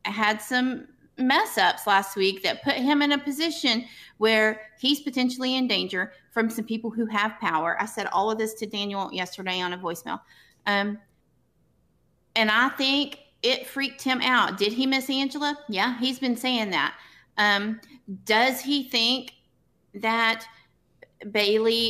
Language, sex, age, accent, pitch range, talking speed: English, female, 30-49, American, 200-255 Hz, 155 wpm